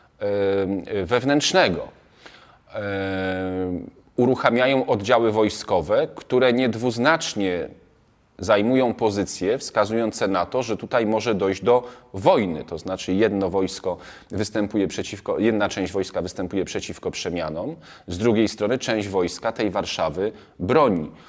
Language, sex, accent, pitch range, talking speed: Polish, male, native, 95-120 Hz, 105 wpm